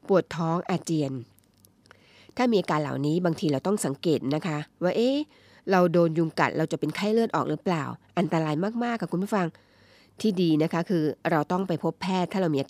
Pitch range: 155-190 Hz